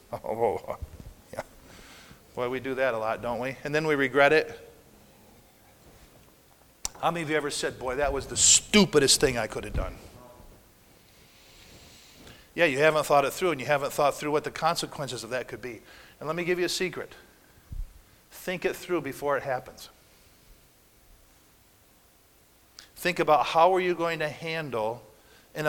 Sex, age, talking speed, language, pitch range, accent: male, 50-69, 165 wpm, English, 130-160 Hz, American